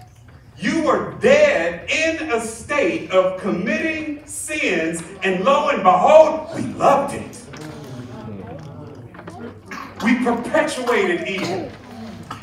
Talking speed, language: 90 wpm, English